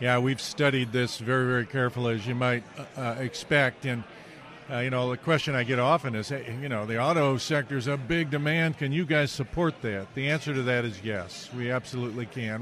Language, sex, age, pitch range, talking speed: English, male, 50-69, 125-150 Hz, 215 wpm